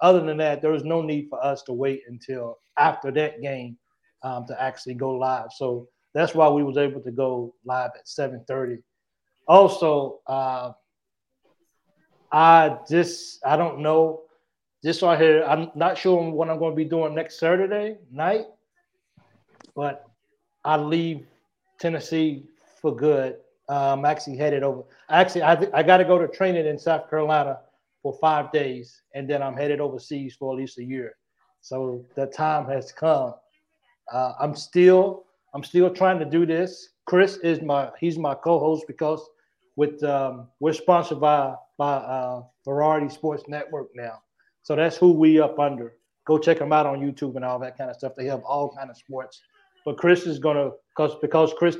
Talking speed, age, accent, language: 175 wpm, 30-49, American, English